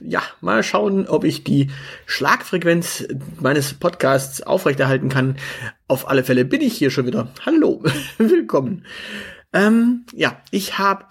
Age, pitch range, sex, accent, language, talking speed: 30-49, 130-180 Hz, male, German, German, 135 wpm